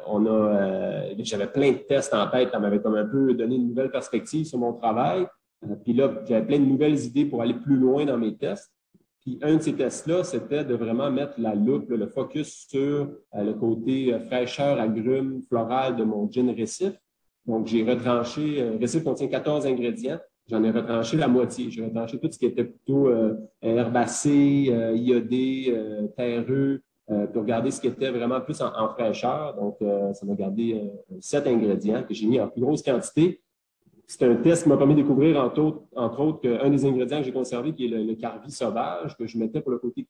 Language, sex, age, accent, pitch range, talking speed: French, male, 30-49, Canadian, 115-140 Hz, 215 wpm